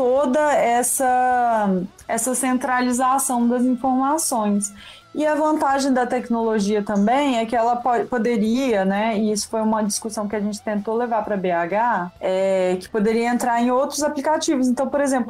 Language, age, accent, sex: Portuguese, 20-39, Brazilian, female